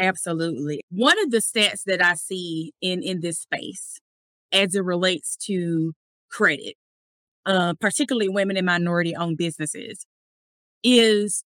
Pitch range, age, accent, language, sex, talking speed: 175-225 Hz, 30-49, American, English, female, 125 wpm